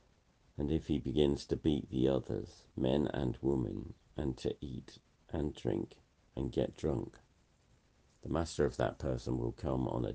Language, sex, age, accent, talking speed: English, male, 50-69, British, 165 wpm